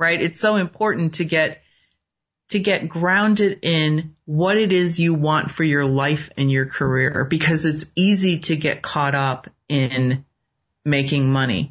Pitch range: 130-165 Hz